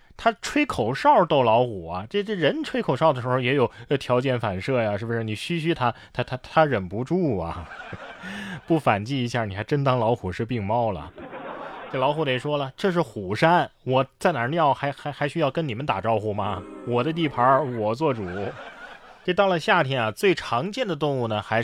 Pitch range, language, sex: 115-180 Hz, Chinese, male